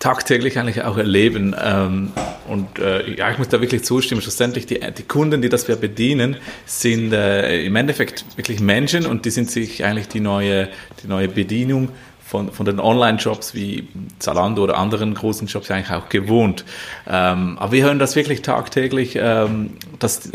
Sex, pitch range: male, 100-125 Hz